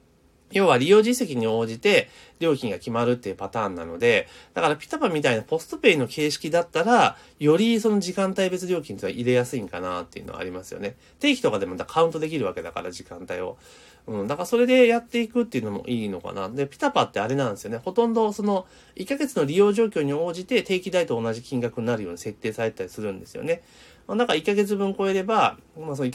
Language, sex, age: Japanese, male, 30-49